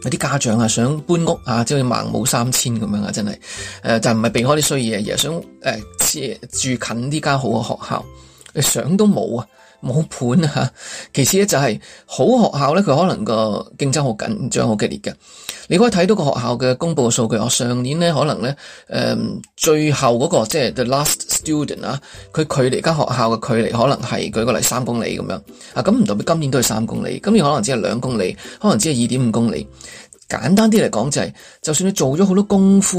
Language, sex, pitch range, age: Chinese, male, 115-155 Hz, 20-39